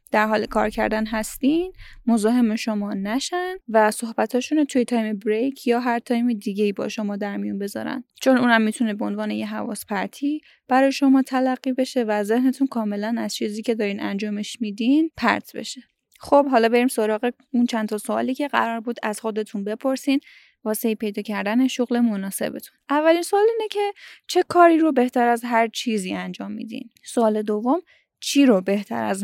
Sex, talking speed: female, 170 wpm